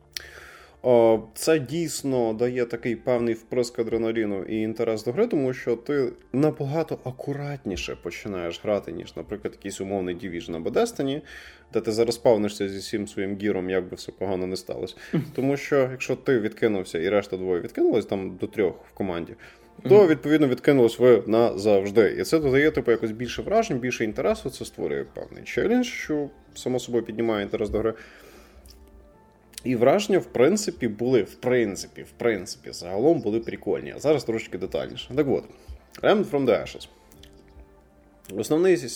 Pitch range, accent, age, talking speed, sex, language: 105-150 Hz, native, 20-39, 155 wpm, male, Russian